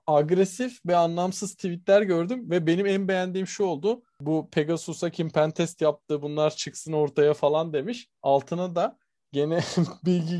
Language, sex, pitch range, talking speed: Turkish, male, 140-175 Hz, 145 wpm